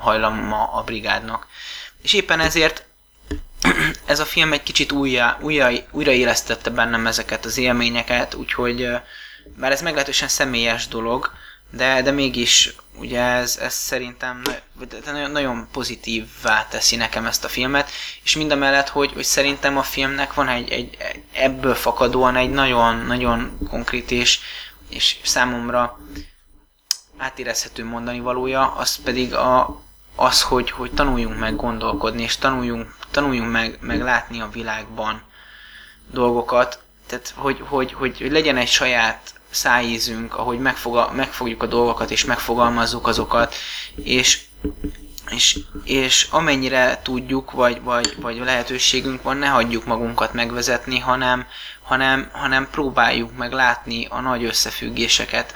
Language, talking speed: Hungarian, 130 wpm